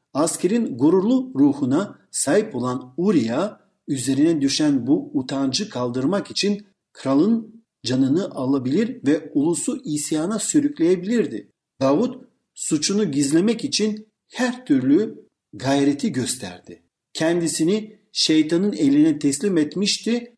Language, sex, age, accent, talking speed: Turkish, male, 50-69, native, 95 wpm